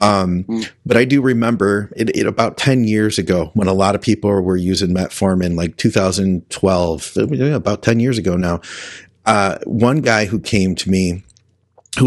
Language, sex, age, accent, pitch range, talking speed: English, male, 30-49, American, 95-115 Hz, 180 wpm